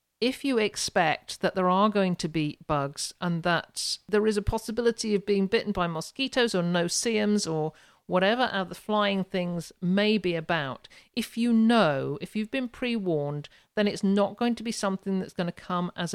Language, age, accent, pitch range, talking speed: English, 50-69, British, 160-215 Hz, 190 wpm